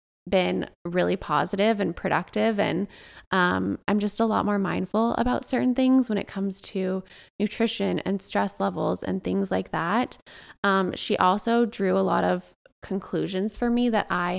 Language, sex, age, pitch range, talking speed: English, female, 20-39, 170-210 Hz, 165 wpm